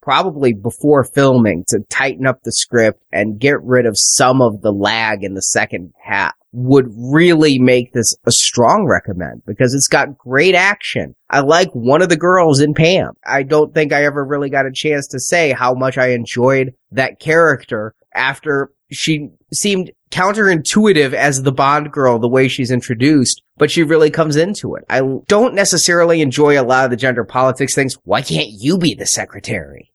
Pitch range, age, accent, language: 125-150 Hz, 30-49, American, English